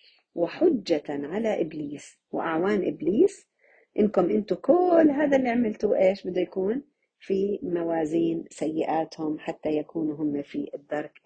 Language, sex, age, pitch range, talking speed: Arabic, female, 50-69, 155-240 Hz, 115 wpm